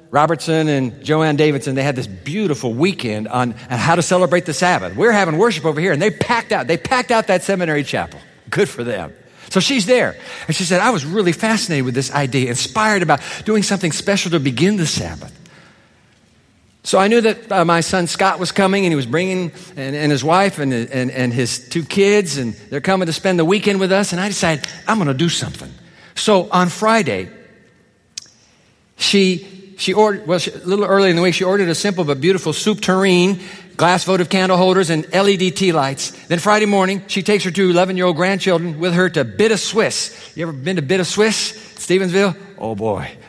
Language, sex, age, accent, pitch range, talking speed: English, male, 50-69, American, 150-195 Hz, 205 wpm